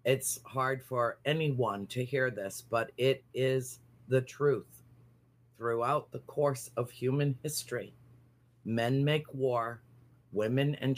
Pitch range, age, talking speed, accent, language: 115-125 Hz, 50-69, 125 wpm, American, English